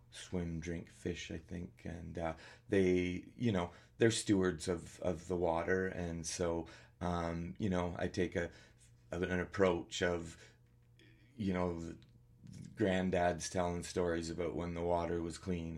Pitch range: 85-95 Hz